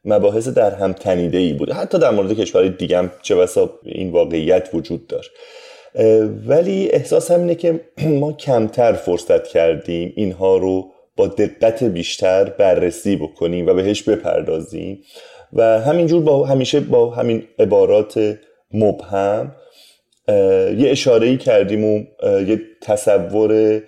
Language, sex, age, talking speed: Persian, male, 30-49, 130 wpm